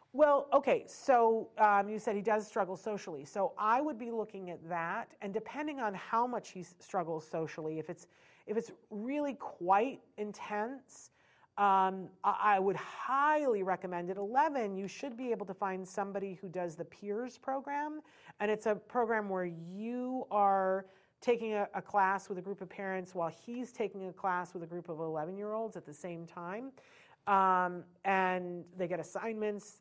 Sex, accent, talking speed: female, American, 175 wpm